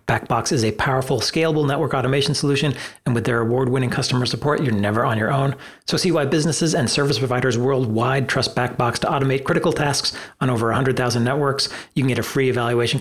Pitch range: 125-140 Hz